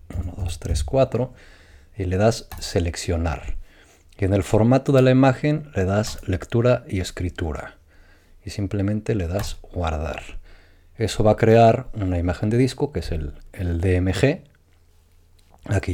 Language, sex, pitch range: Spanish, male, 85-105 Hz